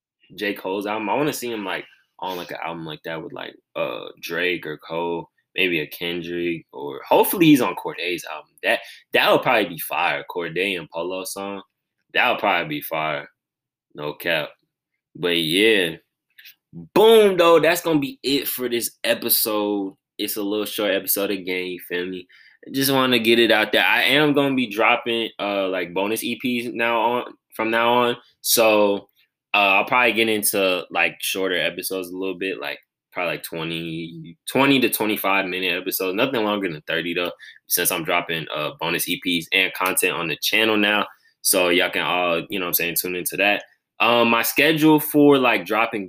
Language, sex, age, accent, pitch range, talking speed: English, male, 10-29, American, 95-120 Hz, 185 wpm